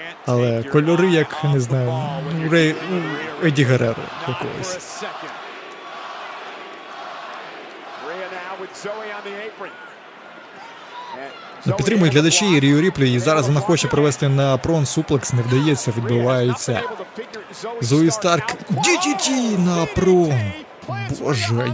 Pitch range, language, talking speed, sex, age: 140-195 Hz, Ukrainian, 90 wpm, male, 30-49